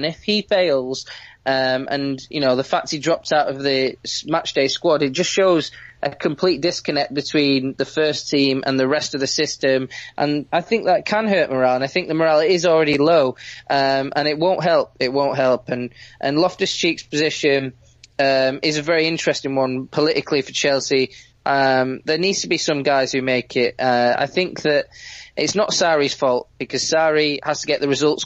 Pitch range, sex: 130-155 Hz, male